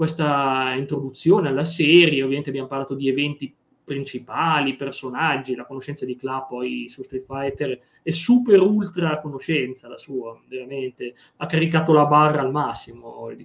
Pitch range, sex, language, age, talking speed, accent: 130-160 Hz, male, Italian, 20-39, 145 wpm, native